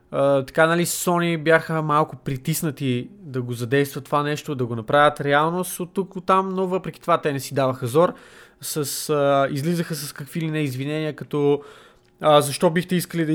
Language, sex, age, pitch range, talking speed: Bulgarian, male, 20-39, 140-170 Hz, 190 wpm